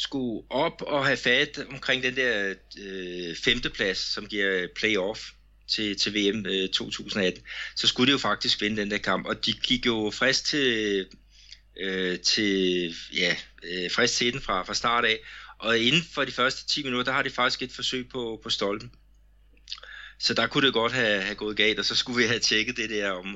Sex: male